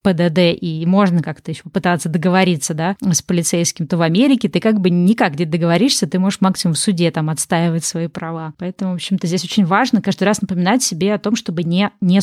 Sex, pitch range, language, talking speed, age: female, 170-205 Hz, Russian, 210 wpm, 20-39